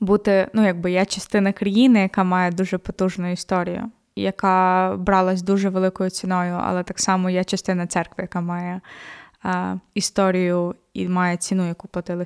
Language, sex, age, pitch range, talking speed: Ukrainian, female, 20-39, 180-205 Hz, 150 wpm